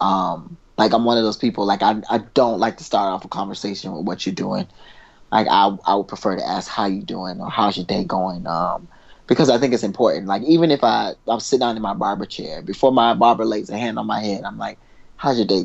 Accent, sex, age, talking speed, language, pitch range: American, male, 20-39, 255 wpm, English, 105-120 Hz